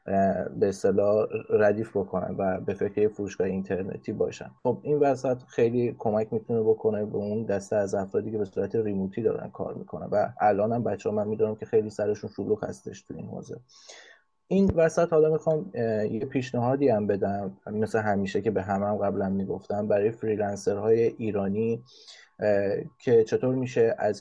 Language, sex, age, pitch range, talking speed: Persian, male, 20-39, 100-120 Hz, 170 wpm